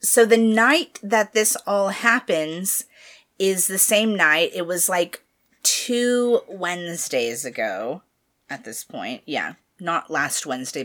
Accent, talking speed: American, 135 wpm